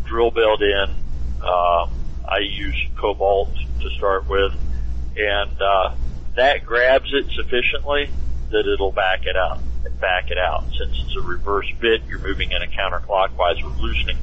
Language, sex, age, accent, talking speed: English, male, 50-69, American, 155 wpm